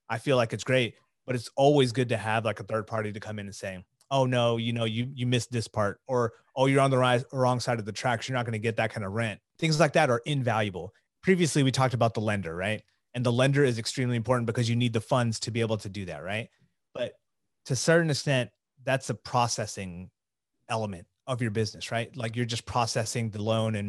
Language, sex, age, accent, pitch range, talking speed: English, male, 30-49, American, 110-130 Hz, 245 wpm